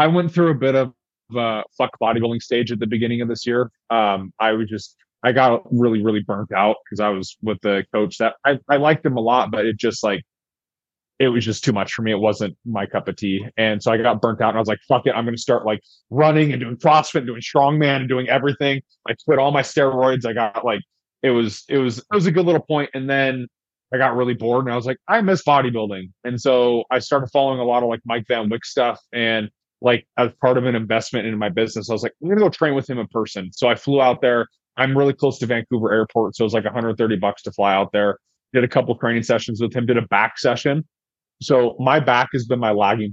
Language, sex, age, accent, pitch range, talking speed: English, male, 20-39, American, 110-130 Hz, 265 wpm